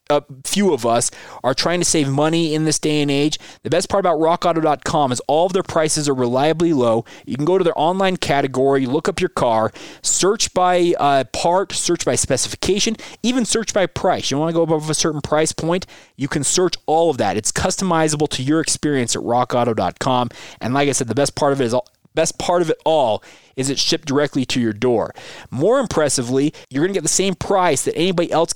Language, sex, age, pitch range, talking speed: English, male, 20-39, 130-170 Hz, 225 wpm